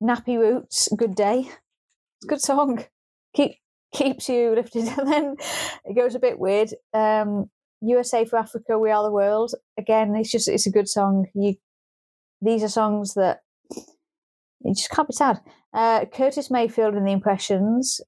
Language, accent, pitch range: English, British, 200-235 Hz